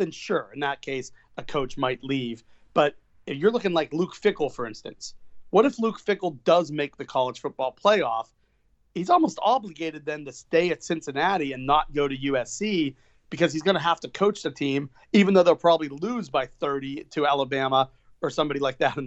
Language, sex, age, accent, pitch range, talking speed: English, male, 40-59, American, 130-165 Hz, 200 wpm